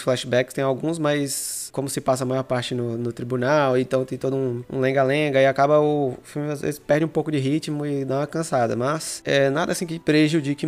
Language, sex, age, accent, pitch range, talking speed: Portuguese, male, 20-39, Brazilian, 120-145 Hz, 225 wpm